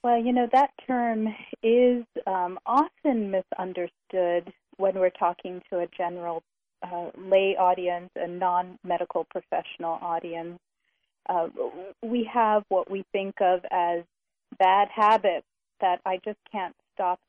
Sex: female